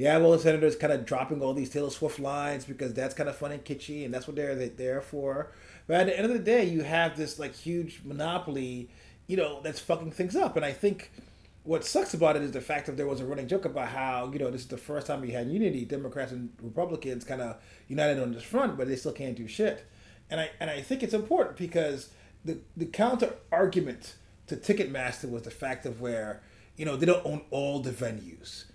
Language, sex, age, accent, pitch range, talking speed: English, male, 30-49, American, 130-165 Hz, 240 wpm